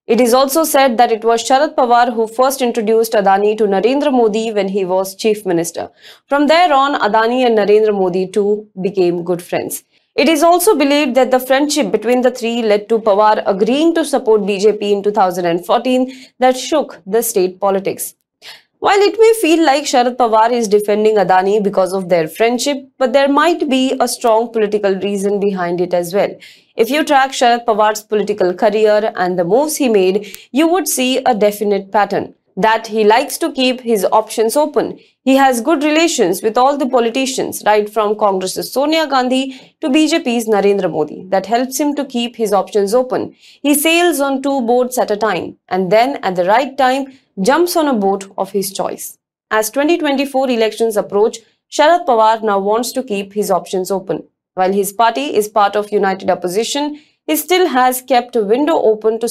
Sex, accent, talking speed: female, Indian, 185 wpm